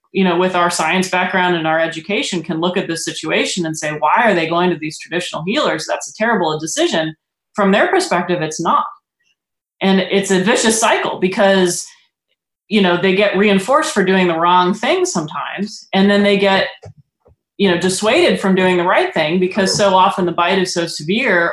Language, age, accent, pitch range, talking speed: English, 30-49, American, 165-200 Hz, 195 wpm